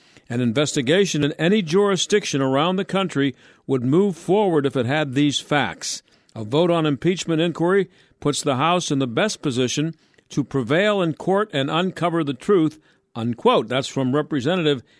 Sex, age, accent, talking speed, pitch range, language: male, 50-69, American, 160 wpm, 135-175 Hz, English